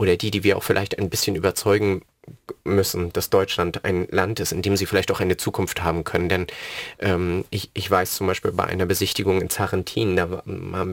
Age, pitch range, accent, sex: 30-49, 95-110 Hz, German, male